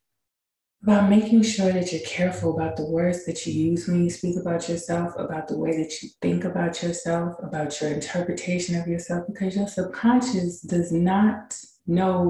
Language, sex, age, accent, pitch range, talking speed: English, female, 20-39, American, 155-205 Hz, 175 wpm